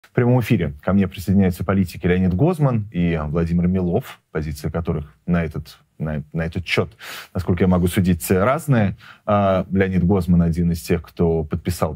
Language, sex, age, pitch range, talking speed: Russian, male, 30-49, 95-120 Hz, 160 wpm